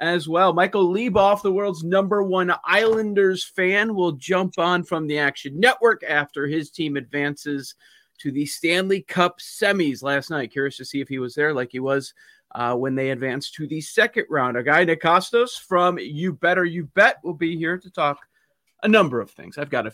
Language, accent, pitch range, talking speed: English, American, 130-170 Hz, 200 wpm